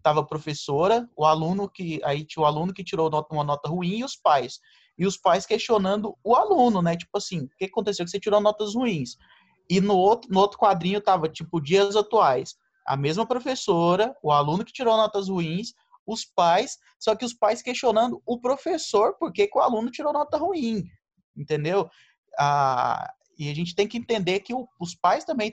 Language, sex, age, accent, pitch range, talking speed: Portuguese, male, 20-39, Brazilian, 155-220 Hz, 195 wpm